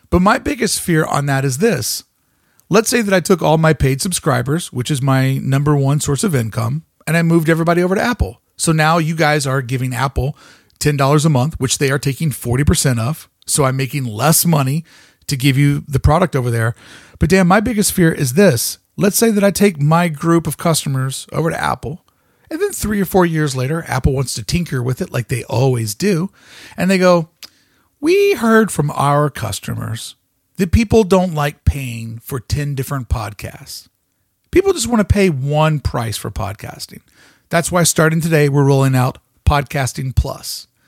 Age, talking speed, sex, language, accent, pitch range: 40-59, 190 wpm, male, English, American, 130-180 Hz